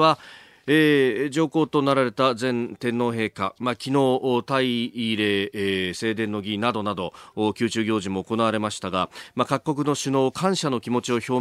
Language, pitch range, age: Japanese, 105-145 Hz, 40-59